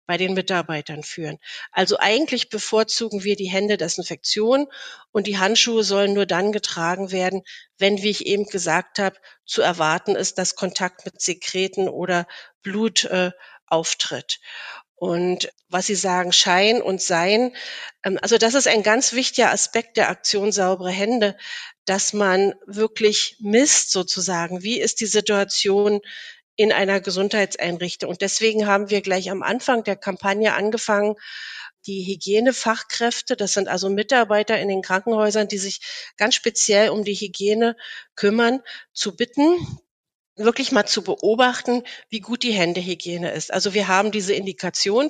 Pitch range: 190-225 Hz